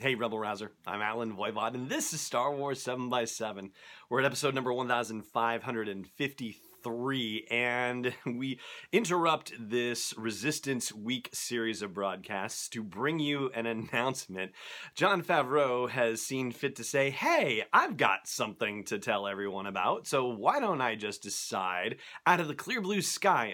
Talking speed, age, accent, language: 150 wpm, 30-49, American, English